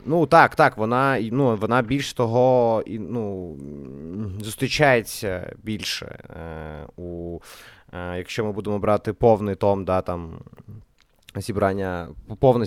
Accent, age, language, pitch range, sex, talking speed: native, 20-39, Ukrainian, 95-125 Hz, male, 115 wpm